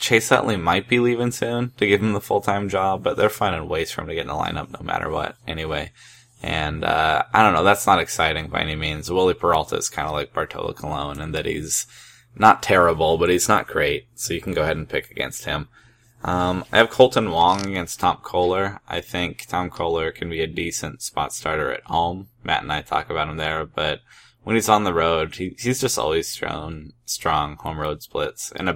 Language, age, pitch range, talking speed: English, 10-29, 80-110 Hz, 225 wpm